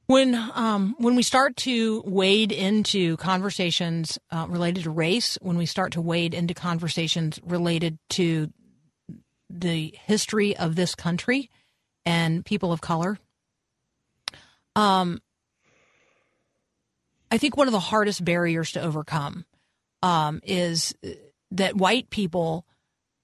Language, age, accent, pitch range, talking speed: English, 40-59, American, 165-205 Hz, 120 wpm